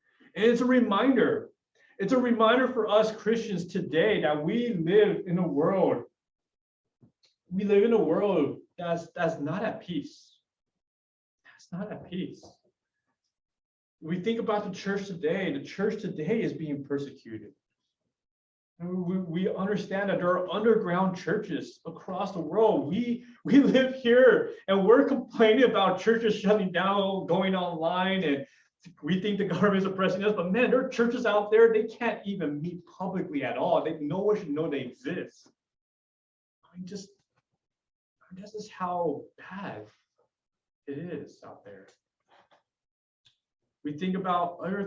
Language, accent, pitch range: English, American, 155-215 Hz